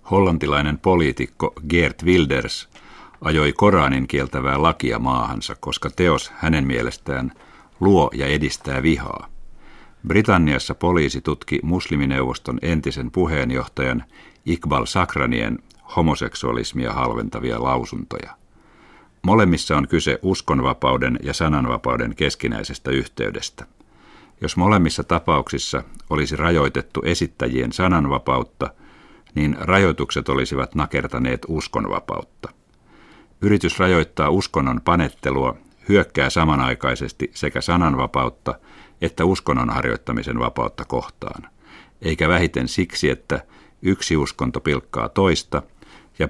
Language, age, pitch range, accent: Finnish, 50-69, 65-85 Hz, native